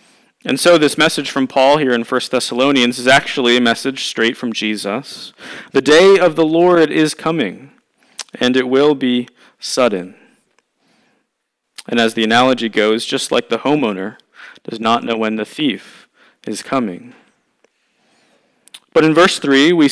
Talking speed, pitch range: 155 wpm, 120-155 Hz